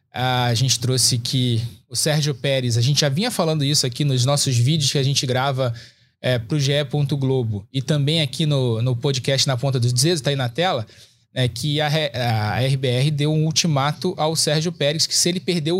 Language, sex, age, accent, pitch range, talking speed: Portuguese, male, 20-39, Brazilian, 125-155 Hz, 205 wpm